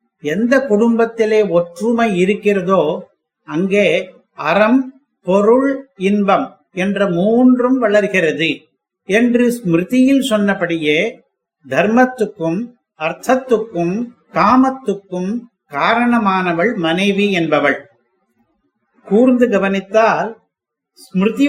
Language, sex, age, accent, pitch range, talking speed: Tamil, male, 50-69, native, 180-230 Hz, 60 wpm